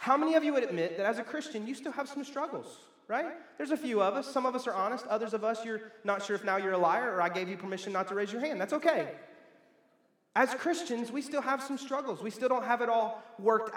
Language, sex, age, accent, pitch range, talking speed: English, male, 30-49, American, 180-255 Hz, 275 wpm